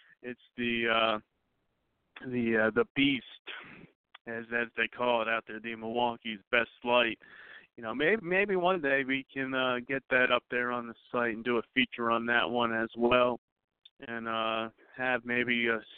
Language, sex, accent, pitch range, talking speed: English, male, American, 115-130 Hz, 180 wpm